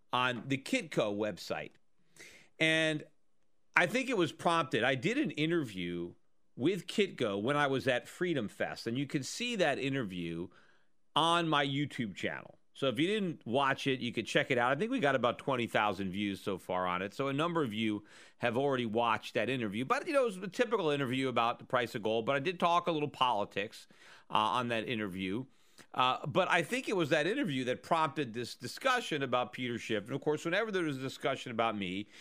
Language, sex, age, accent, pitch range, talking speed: English, male, 40-59, American, 115-155 Hz, 210 wpm